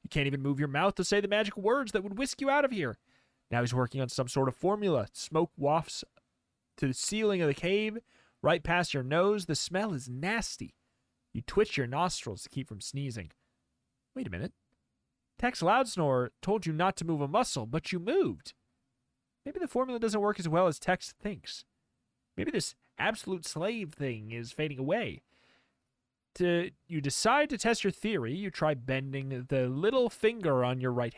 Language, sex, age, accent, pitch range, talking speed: English, male, 30-49, American, 130-205 Hz, 190 wpm